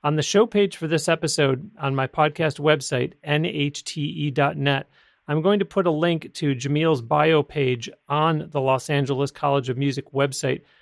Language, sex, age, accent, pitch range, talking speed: English, male, 40-59, American, 140-170 Hz, 165 wpm